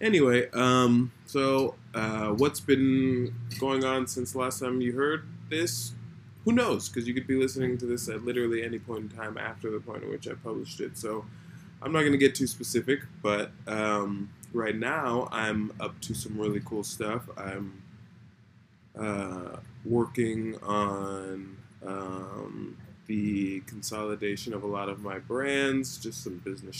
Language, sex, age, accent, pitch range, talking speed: English, male, 20-39, American, 105-125 Hz, 165 wpm